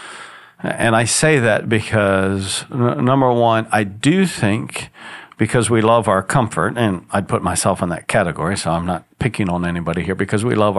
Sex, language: male, English